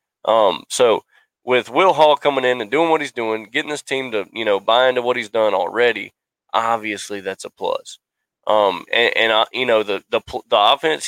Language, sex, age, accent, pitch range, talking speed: English, male, 20-39, American, 110-155 Hz, 205 wpm